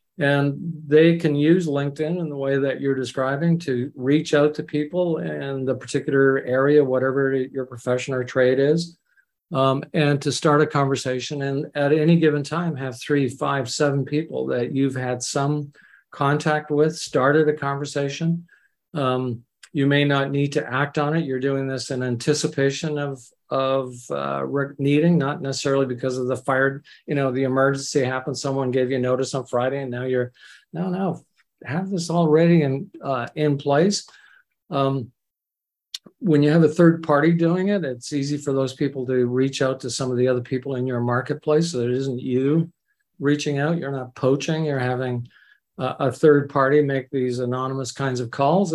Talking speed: 180 wpm